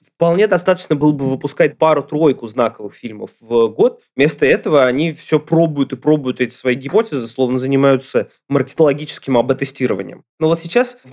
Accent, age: native, 20-39